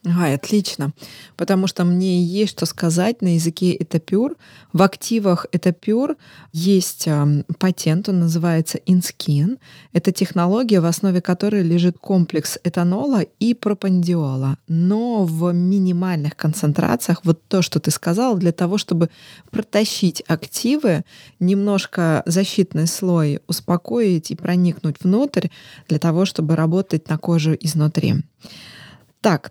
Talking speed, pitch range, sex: 120 wpm, 160-195 Hz, female